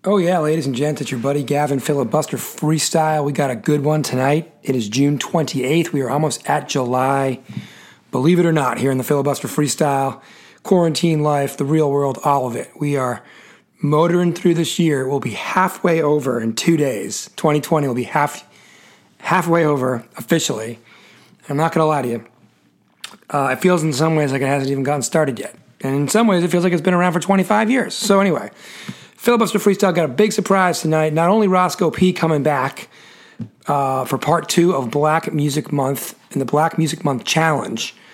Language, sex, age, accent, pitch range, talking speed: English, male, 40-59, American, 140-175 Hz, 205 wpm